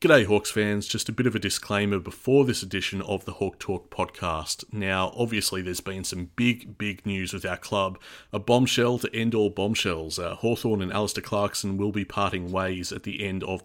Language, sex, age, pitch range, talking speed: English, male, 30-49, 90-110 Hz, 205 wpm